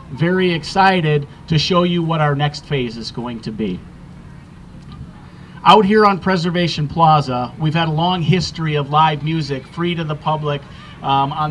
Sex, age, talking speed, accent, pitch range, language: male, 40-59, 165 wpm, American, 145-170 Hz, English